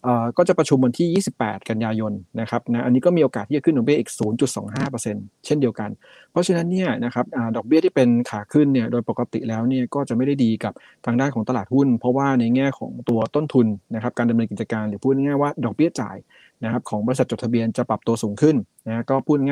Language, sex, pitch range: Thai, male, 115-140 Hz